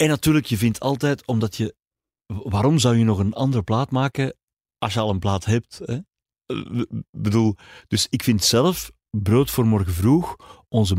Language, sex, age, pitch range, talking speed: Dutch, male, 40-59, 100-130 Hz, 175 wpm